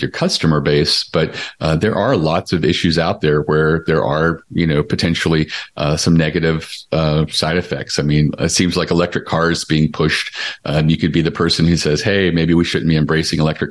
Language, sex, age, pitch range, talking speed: English, male, 40-59, 75-80 Hz, 210 wpm